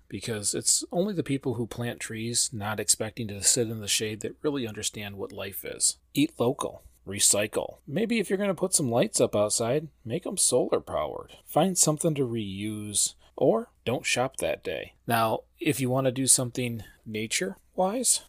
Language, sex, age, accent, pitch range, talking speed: English, male, 40-59, American, 105-135 Hz, 180 wpm